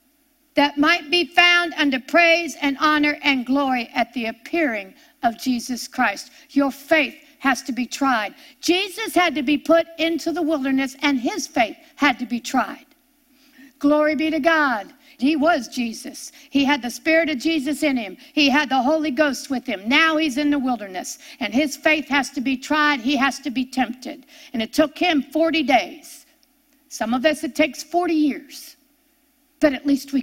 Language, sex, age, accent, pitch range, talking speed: English, female, 60-79, American, 270-315 Hz, 185 wpm